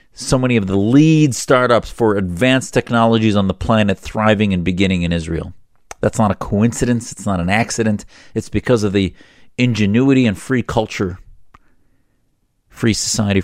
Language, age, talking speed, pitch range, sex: English, 40-59, 155 wpm, 95-130 Hz, male